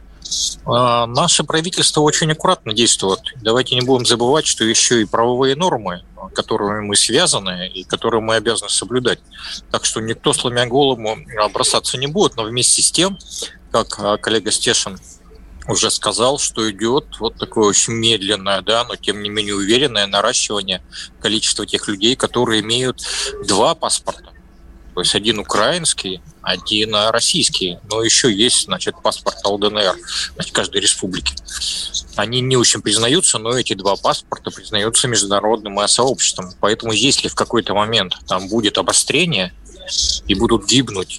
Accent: native